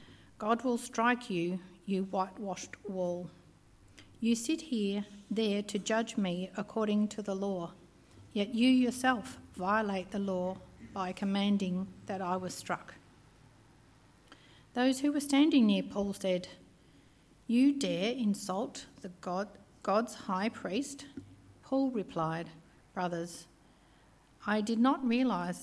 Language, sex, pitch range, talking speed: English, female, 185-230 Hz, 120 wpm